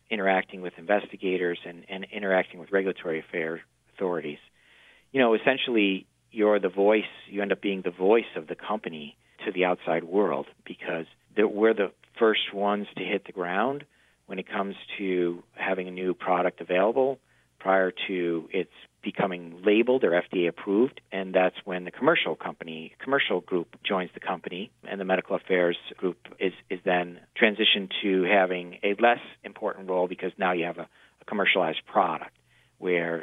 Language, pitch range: English, 85-100 Hz